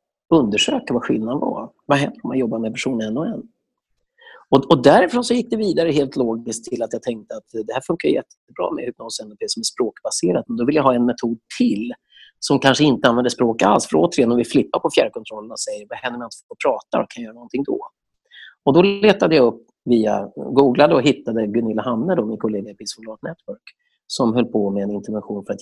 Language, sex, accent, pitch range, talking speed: Swedish, male, native, 110-170 Hz, 225 wpm